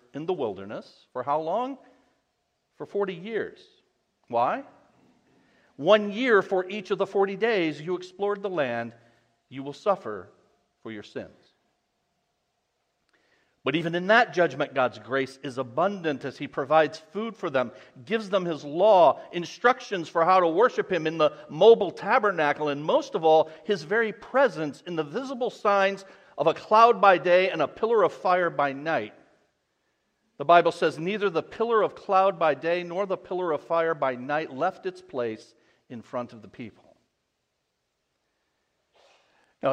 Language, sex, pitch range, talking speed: English, male, 135-200 Hz, 160 wpm